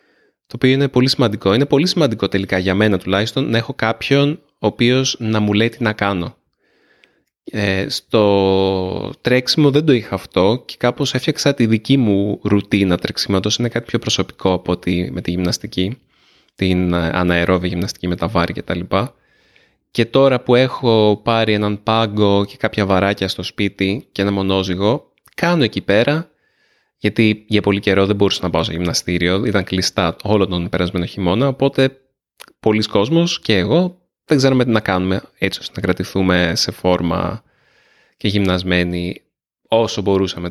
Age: 20-39